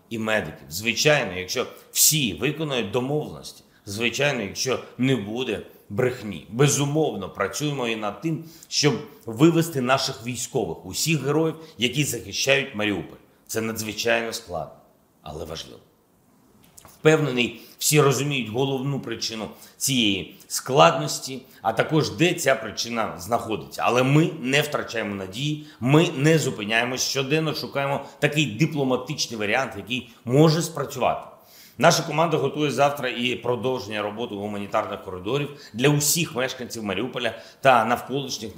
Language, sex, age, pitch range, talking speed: Ukrainian, male, 40-59, 110-140 Hz, 120 wpm